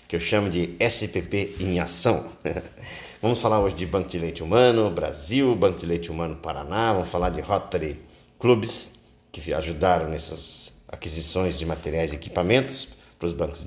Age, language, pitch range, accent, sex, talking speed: 50-69, Portuguese, 85-95 Hz, Brazilian, male, 165 wpm